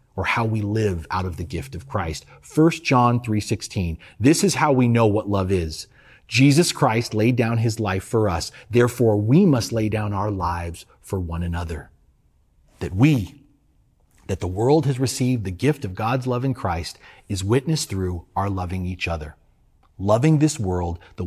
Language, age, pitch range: English, 30-49, 95-130 Hz